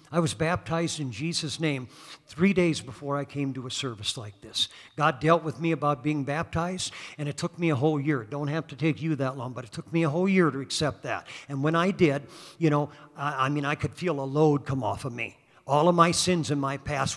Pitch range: 140-185 Hz